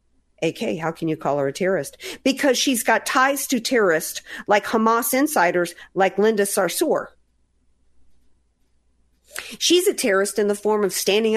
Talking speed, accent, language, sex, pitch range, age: 150 wpm, American, English, female, 140-210 Hz, 50-69